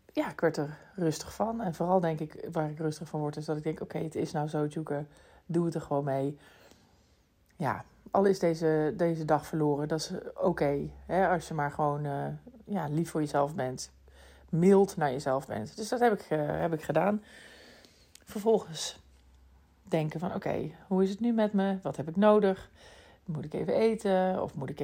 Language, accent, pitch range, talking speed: Dutch, Dutch, 150-200 Hz, 195 wpm